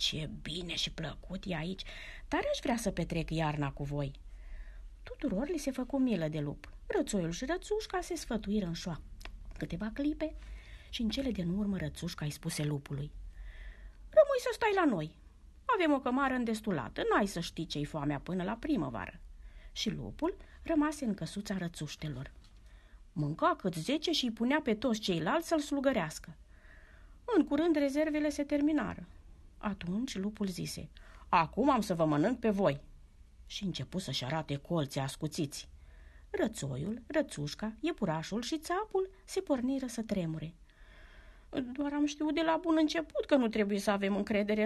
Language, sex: Romanian, female